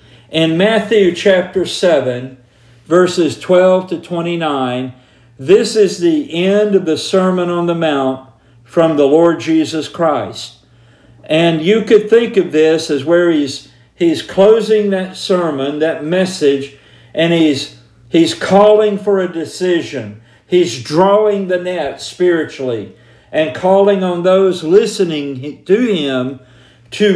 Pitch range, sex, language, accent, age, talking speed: 130-185 Hz, male, English, American, 50-69, 130 wpm